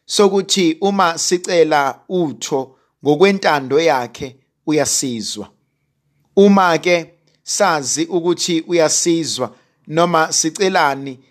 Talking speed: 80 wpm